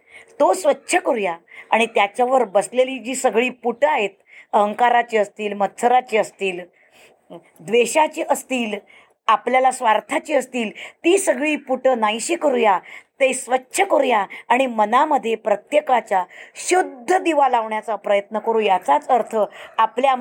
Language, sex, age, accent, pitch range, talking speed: Marathi, female, 20-39, native, 210-280 Hz, 110 wpm